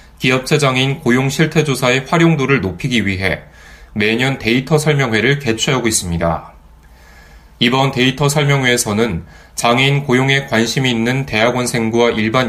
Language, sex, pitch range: Korean, male, 95-135 Hz